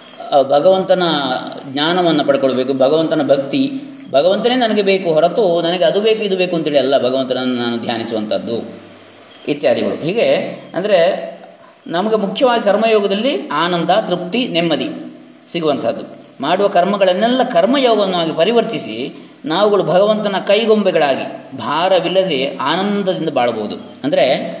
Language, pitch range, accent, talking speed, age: English, 145-220 Hz, Indian, 40 wpm, 20-39